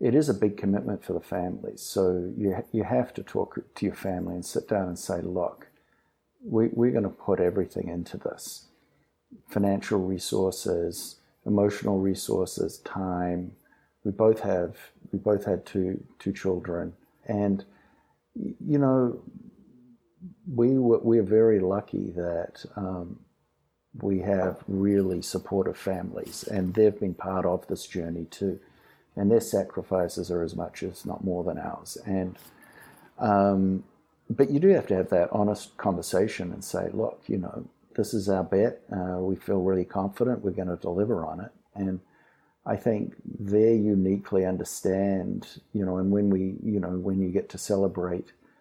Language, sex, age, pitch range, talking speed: English, male, 50-69, 90-105 Hz, 160 wpm